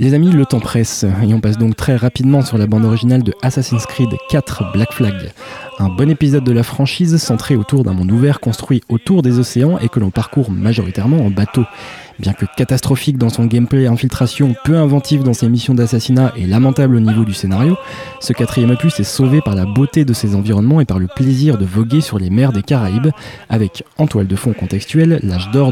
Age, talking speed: 20-39, 215 wpm